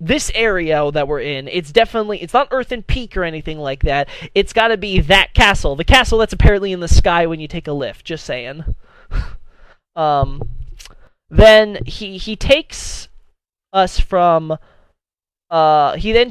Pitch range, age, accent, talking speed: 155-210 Hz, 20-39, American, 160 wpm